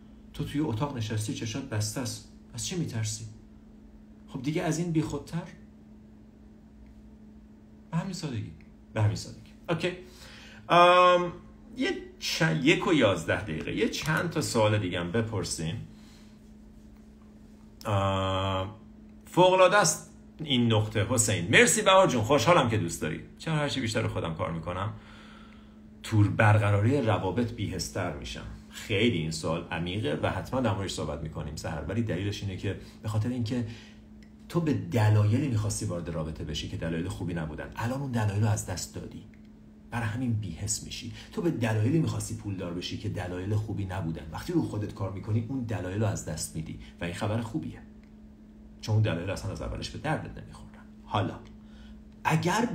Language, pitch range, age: Persian, 95-120 Hz, 50-69